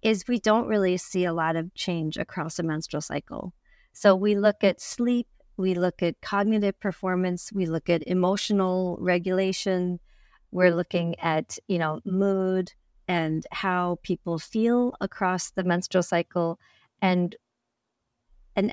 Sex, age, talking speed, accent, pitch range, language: female, 40-59, 140 wpm, American, 175-205 Hz, English